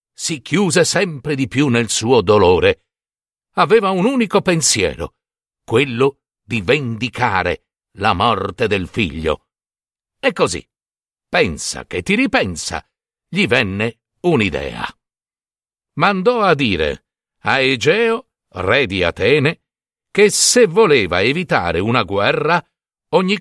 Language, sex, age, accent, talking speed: Italian, male, 60-79, native, 110 wpm